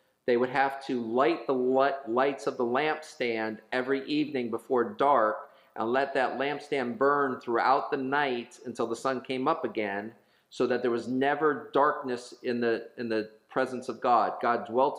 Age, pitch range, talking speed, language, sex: 40-59, 115-140 Hz, 170 wpm, English, male